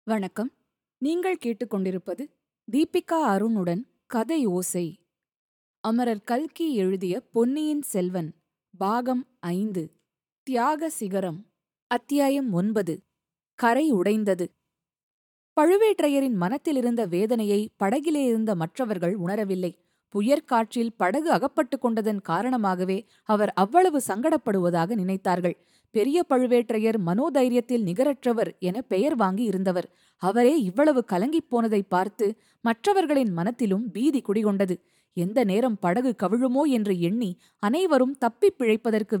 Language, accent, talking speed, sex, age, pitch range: Tamil, native, 95 wpm, female, 20-39, 190-260 Hz